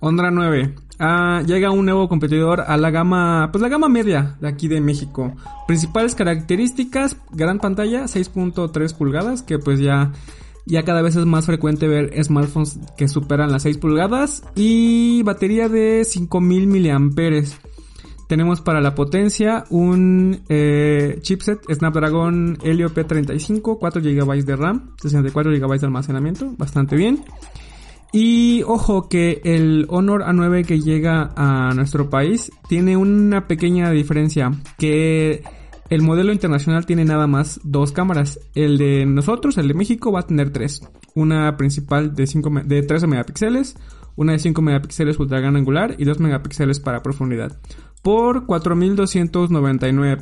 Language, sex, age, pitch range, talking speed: Spanish, male, 20-39, 145-190 Hz, 145 wpm